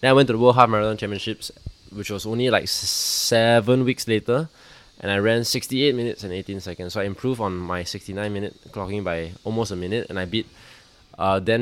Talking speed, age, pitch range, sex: 210 wpm, 20-39, 90-110 Hz, male